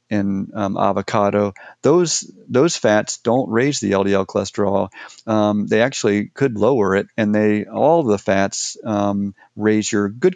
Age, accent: 40-59, American